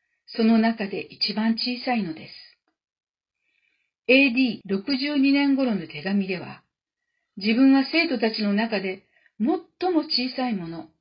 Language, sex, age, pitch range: Japanese, female, 50-69, 200-270 Hz